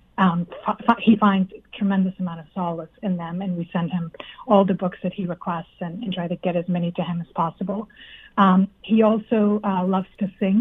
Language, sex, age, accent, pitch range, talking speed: English, female, 40-59, American, 185-210 Hz, 215 wpm